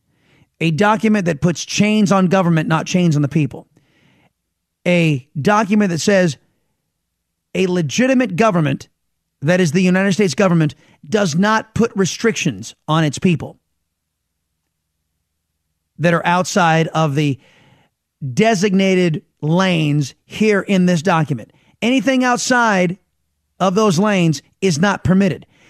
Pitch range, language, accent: 140-185 Hz, English, American